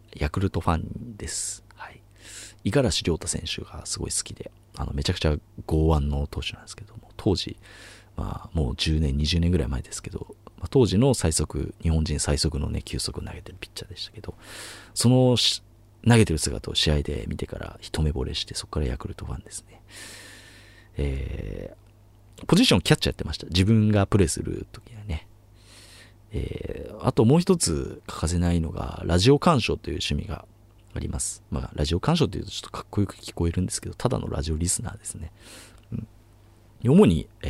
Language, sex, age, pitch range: Japanese, male, 40-59, 85-110 Hz